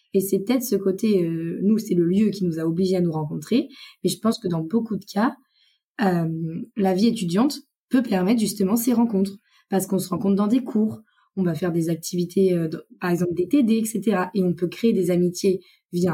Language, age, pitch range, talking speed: French, 20-39, 180-235 Hz, 225 wpm